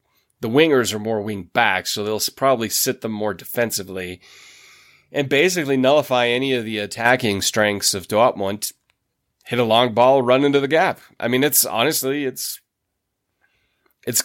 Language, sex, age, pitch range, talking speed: English, male, 30-49, 100-125 Hz, 155 wpm